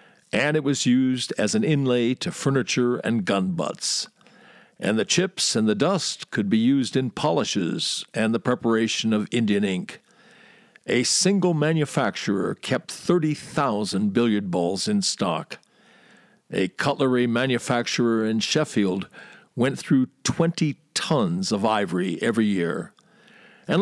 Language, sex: English, male